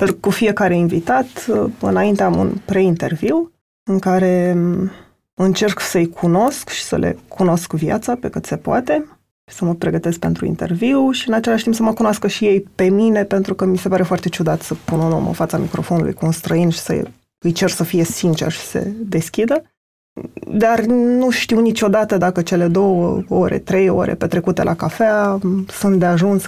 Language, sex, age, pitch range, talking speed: Romanian, female, 20-39, 175-210 Hz, 185 wpm